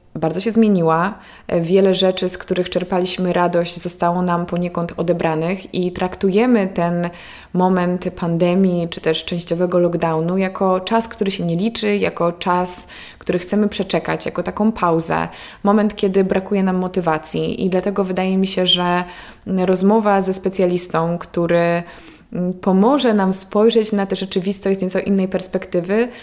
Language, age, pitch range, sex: Polish, 20-39, 175-200 Hz, female